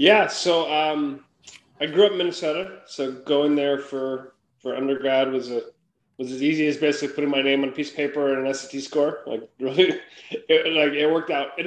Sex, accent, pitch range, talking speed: male, American, 130-155 Hz, 210 wpm